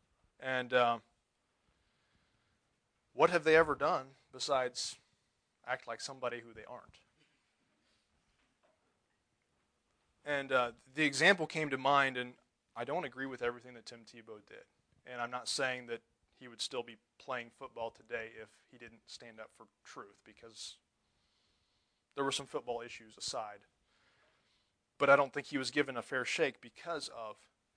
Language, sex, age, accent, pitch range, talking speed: English, male, 30-49, American, 115-135 Hz, 150 wpm